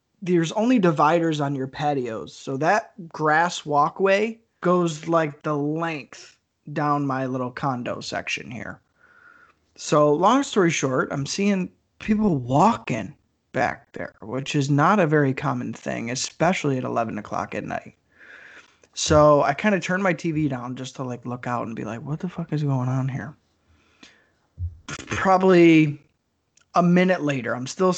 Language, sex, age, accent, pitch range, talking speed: English, male, 20-39, American, 140-185 Hz, 155 wpm